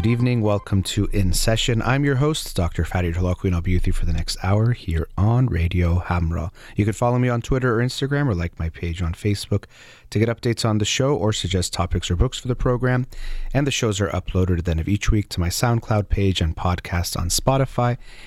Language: English